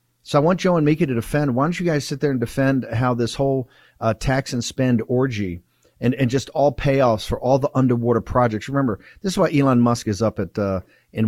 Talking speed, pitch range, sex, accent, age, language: 240 wpm, 115-145 Hz, male, American, 50-69, English